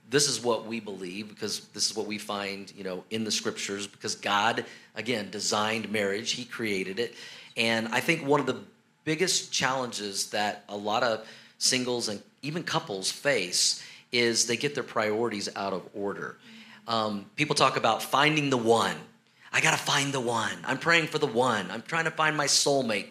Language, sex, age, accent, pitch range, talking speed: English, male, 40-59, American, 105-130 Hz, 190 wpm